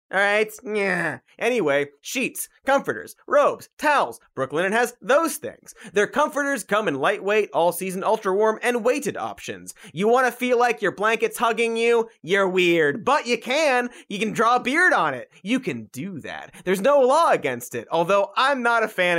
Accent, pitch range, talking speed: American, 155-245 Hz, 180 wpm